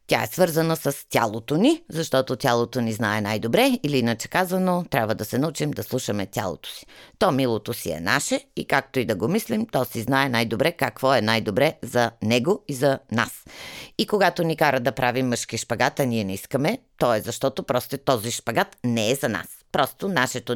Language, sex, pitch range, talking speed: Bulgarian, female, 120-170 Hz, 200 wpm